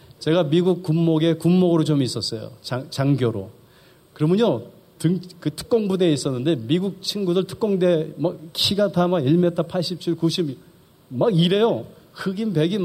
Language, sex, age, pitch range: Korean, male, 40-59, 150-200 Hz